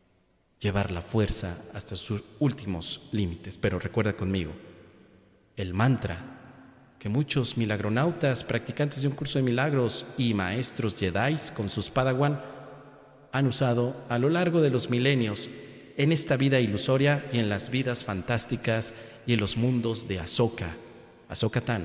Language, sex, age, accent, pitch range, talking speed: Spanish, male, 40-59, Mexican, 100-125 Hz, 140 wpm